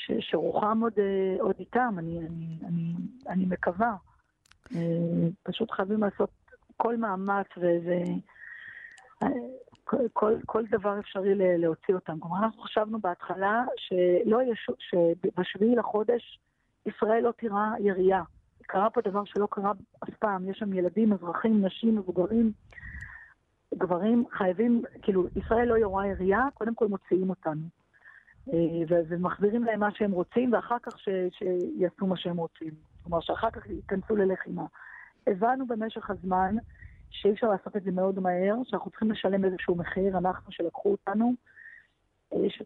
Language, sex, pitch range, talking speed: English, female, 185-225 Hz, 130 wpm